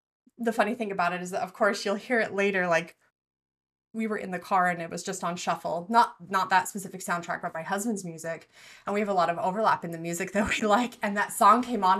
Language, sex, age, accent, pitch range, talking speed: English, female, 20-39, American, 175-230 Hz, 260 wpm